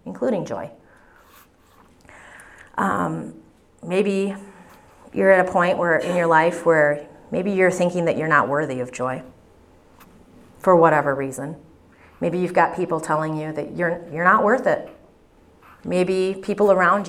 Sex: female